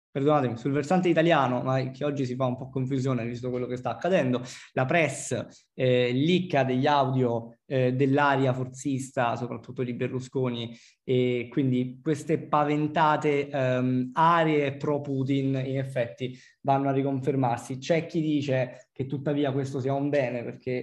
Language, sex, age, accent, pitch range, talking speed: Italian, male, 20-39, native, 125-145 Hz, 150 wpm